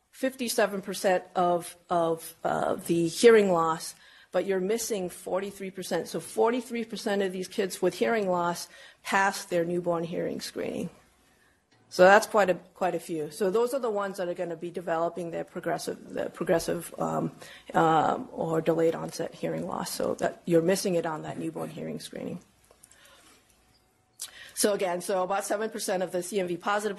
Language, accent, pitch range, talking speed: English, American, 170-200 Hz, 160 wpm